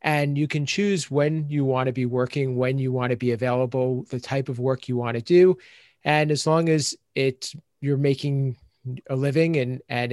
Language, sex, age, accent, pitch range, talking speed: English, male, 40-59, American, 125-145 Hz, 205 wpm